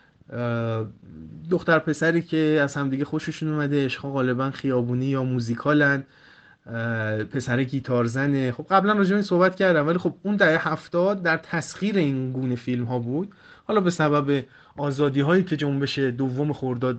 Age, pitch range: 30-49, 130-185 Hz